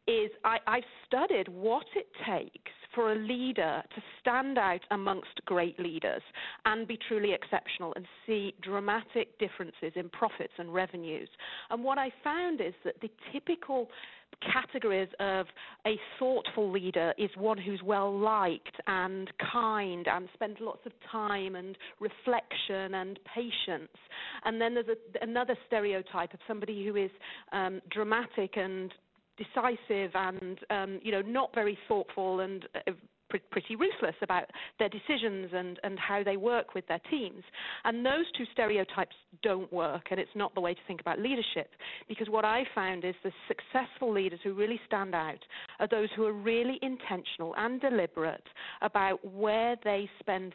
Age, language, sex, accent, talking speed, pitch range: 40-59, English, female, British, 150 wpm, 190-235 Hz